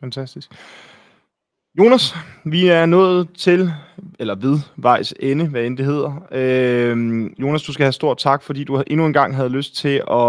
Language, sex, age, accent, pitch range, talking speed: Danish, male, 30-49, native, 125-180 Hz, 175 wpm